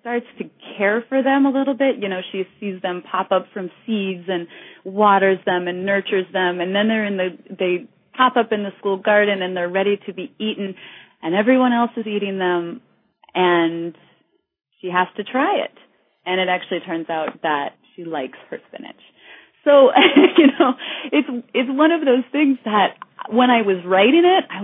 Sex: female